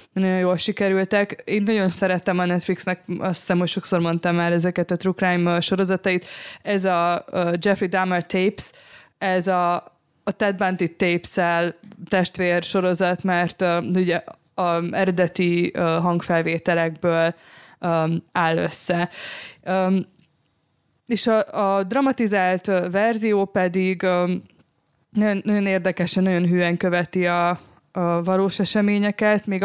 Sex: female